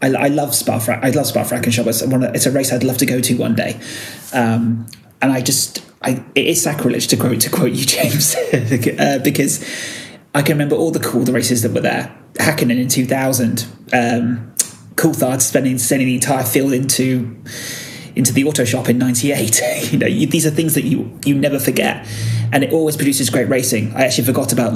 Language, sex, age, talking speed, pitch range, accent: English, male, 30-49, 205 wpm, 120-140 Hz, British